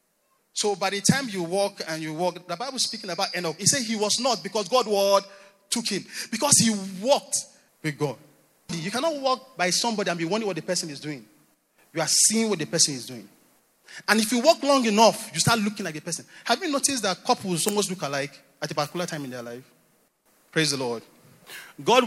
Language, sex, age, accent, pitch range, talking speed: English, male, 30-49, Nigerian, 165-225 Hz, 220 wpm